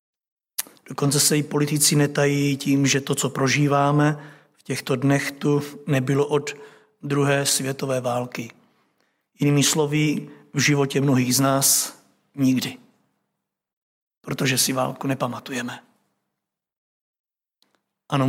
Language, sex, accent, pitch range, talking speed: Czech, male, native, 140-155 Hz, 105 wpm